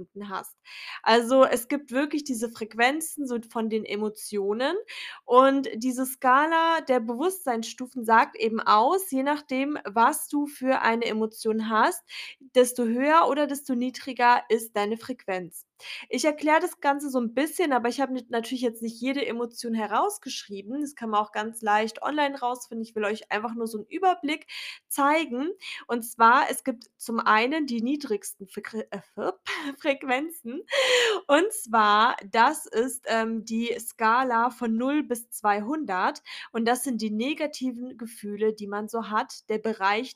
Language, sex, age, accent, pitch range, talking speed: German, female, 20-39, German, 220-280 Hz, 150 wpm